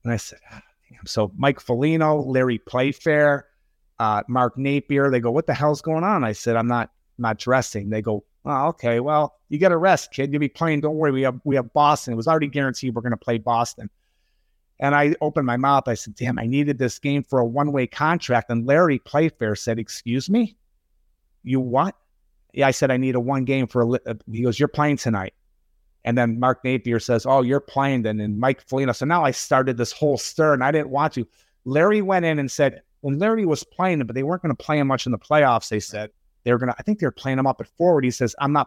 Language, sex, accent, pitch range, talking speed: English, male, American, 115-145 Hz, 245 wpm